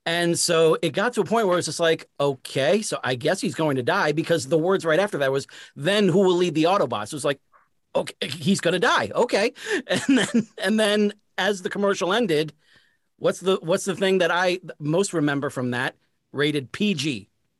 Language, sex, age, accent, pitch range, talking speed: English, male, 40-59, American, 140-180 Hz, 210 wpm